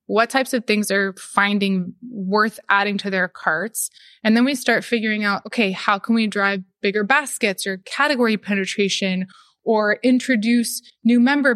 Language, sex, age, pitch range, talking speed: English, female, 20-39, 195-235 Hz, 160 wpm